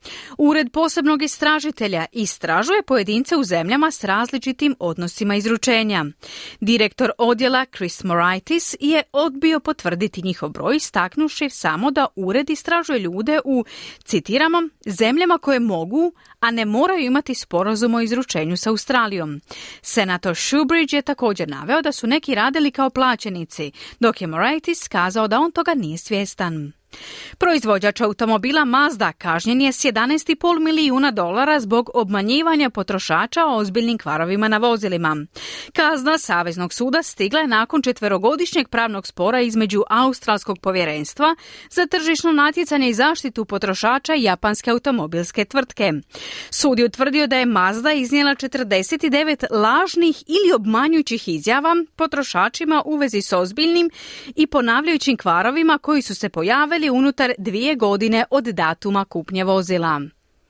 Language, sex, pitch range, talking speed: Croatian, female, 205-300 Hz, 130 wpm